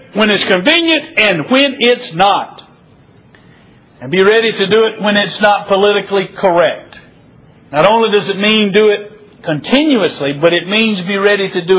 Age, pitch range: 60-79, 180-225 Hz